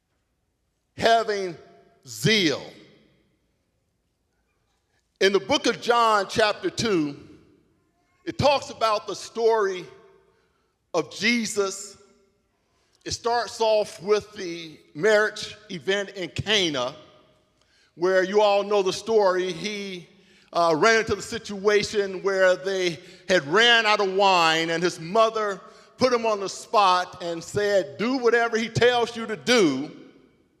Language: English